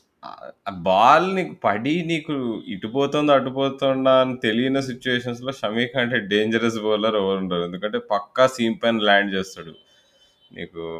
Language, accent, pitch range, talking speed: Telugu, native, 100-125 Hz, 110 wpm